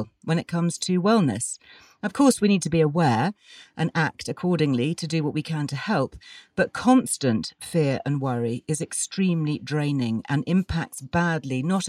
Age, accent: 40-59, British